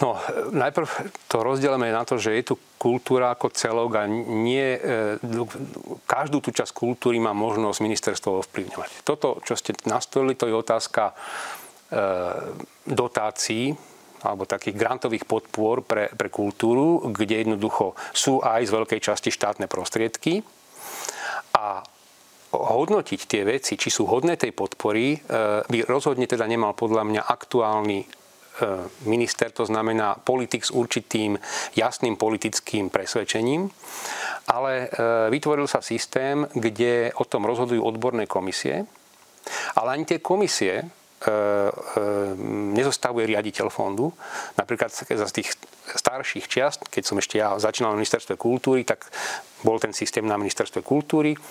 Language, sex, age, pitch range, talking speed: Slovak, male, 40-59, 110-125 Hz, 125 wpm